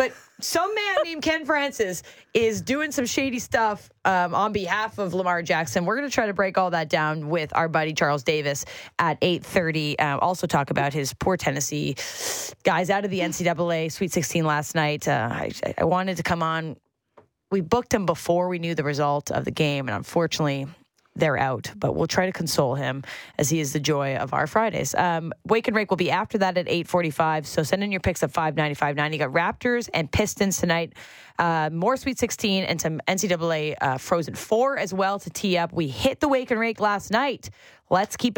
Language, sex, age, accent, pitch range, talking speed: English, female, 20-39, American, 155-205 Hz, 210 wpm